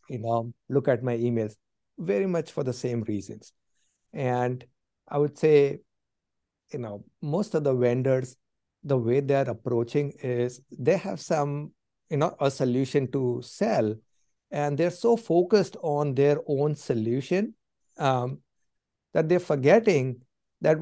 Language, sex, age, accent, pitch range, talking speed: English, male, 60-79, Indian, 125-160 Hz, 140 wpm